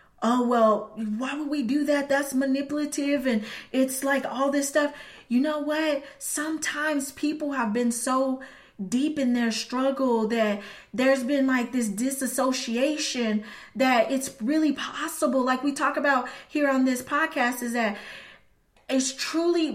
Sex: female